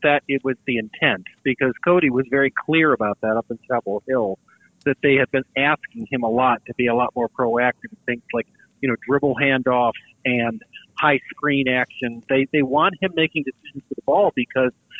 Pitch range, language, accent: 125-165 Hz, English, American